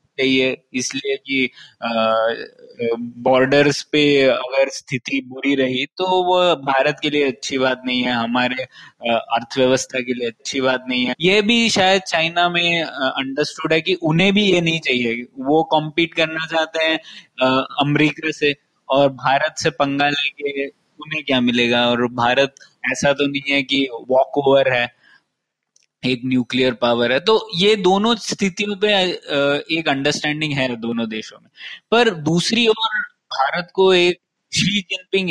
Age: 20-39